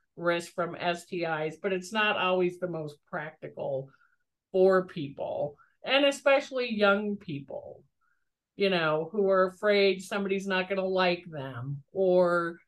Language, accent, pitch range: English, American, 175-215 Hz